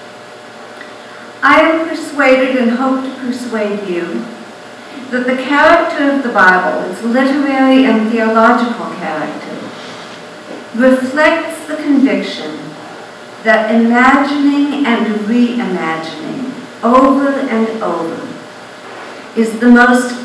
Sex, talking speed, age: female, 95 wpm, 60-79